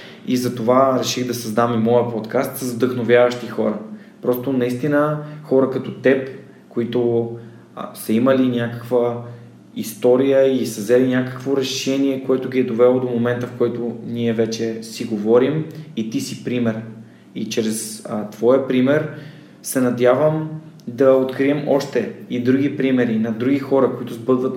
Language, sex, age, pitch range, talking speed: Bulgarian, male, 20-39, 115-130 Hz, 145 wpm